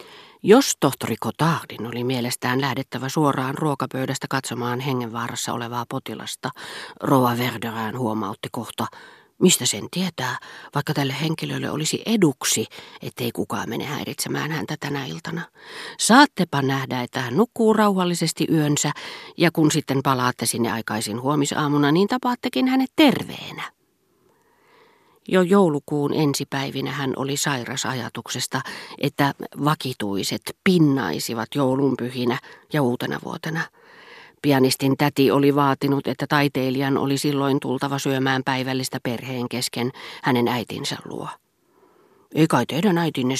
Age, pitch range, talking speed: 40-59, 125-155 Hz, 115 wpm